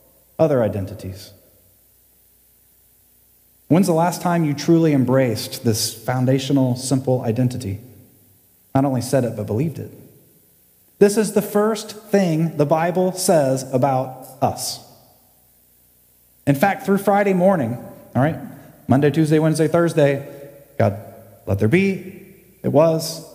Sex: male